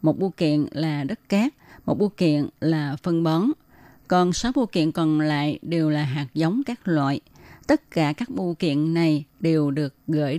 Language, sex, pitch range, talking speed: Vietnamese, female, 150-180 Hz, 190 wpm